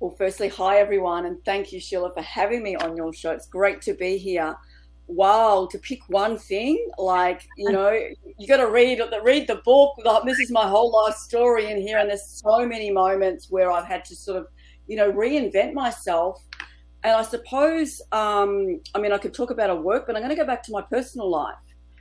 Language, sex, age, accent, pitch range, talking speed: English, female, 40-59, Australian, 165-215 Hz, 215 wpm